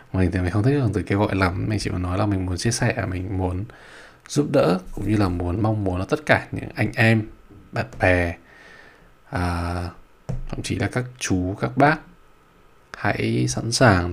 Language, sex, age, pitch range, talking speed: Vietnamese, male, 20-39, 90-110 Hz, 200 wpm